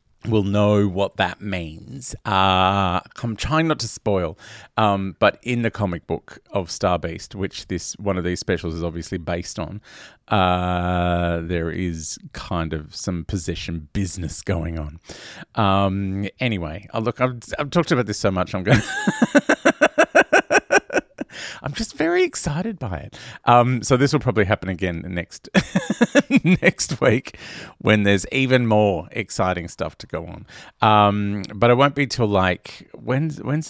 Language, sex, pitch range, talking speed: English, male, 95-130 Hz, 155 wpm